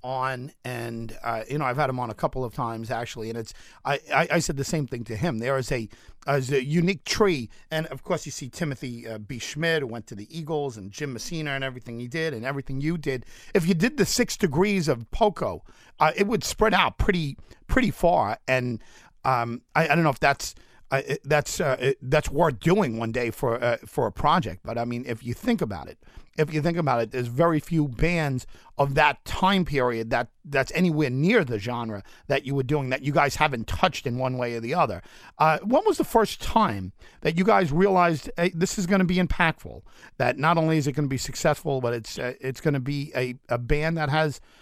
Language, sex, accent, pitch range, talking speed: English, male, American, 125-165 Hz, 235 wpm